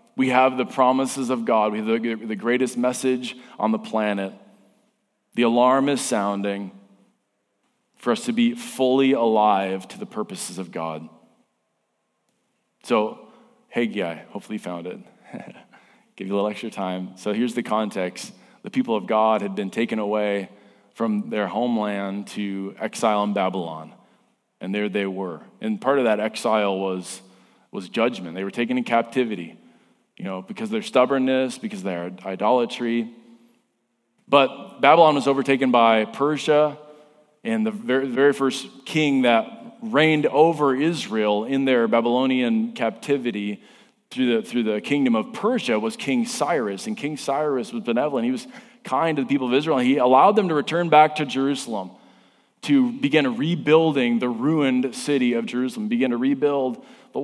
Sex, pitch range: male, 105-150 Hz